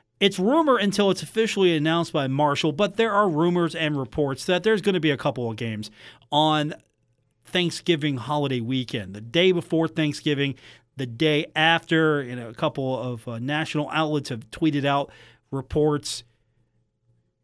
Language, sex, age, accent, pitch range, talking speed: English, male, 40-59, American, 130-185 Hz, 160 wpm